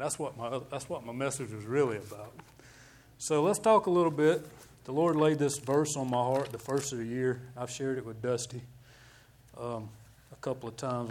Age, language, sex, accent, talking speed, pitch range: 30-49, English, male, American, 210 wpm, 120-140 Hz